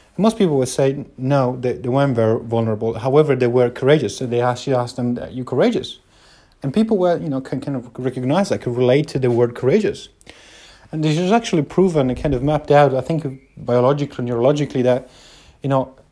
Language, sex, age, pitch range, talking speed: English, male, 30-49, 125-150 Hz, 210 wpm